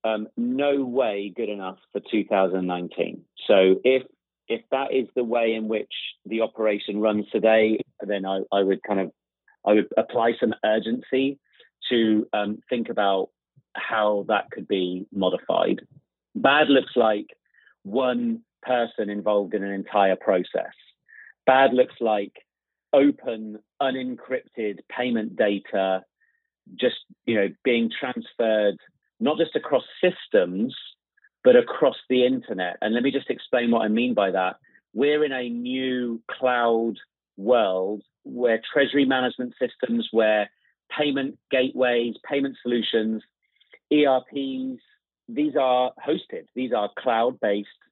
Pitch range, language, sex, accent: 105-130 Hz, English, male, British